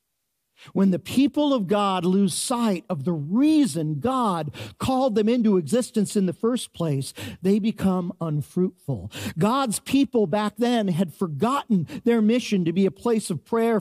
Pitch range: 145-220 Hz